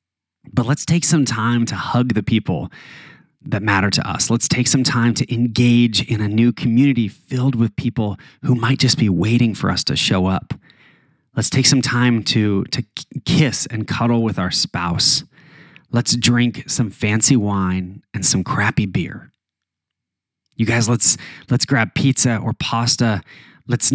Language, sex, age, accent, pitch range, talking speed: English, male, 20-39, American, 110-135 Hz, 165 wpm